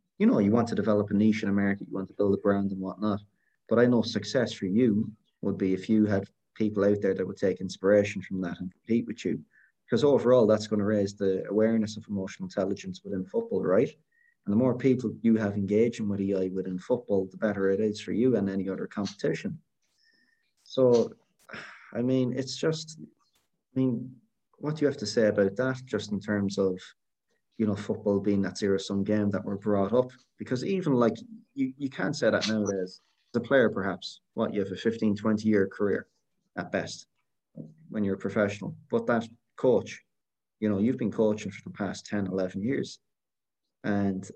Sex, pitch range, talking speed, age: male, 100-115 Hz, 200 wpm, 20-39